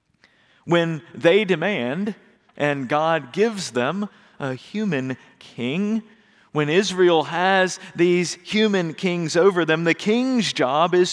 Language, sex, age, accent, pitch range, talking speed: English, male, 40-59, American, 130-205 Hz, 120 wpm